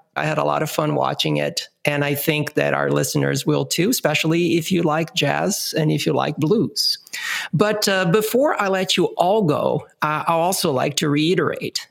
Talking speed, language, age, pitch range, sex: 195 wpm, English, 50-69, 130-180 Hz, male